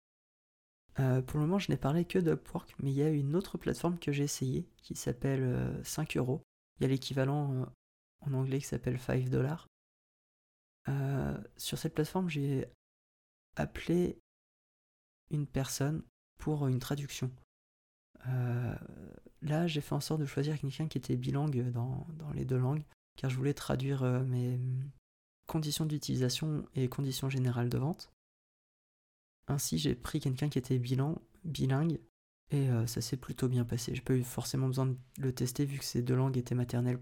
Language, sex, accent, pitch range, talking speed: French, male, French, 125-145 Hz, 170 wpm